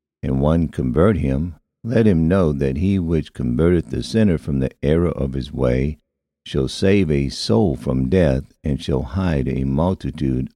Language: English